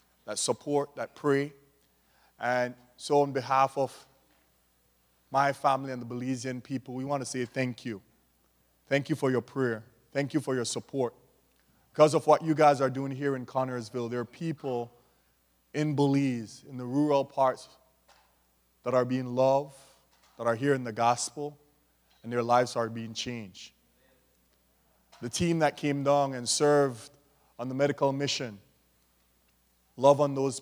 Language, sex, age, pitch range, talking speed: English, male, 30-49, 120-145 Hz, 155 wpm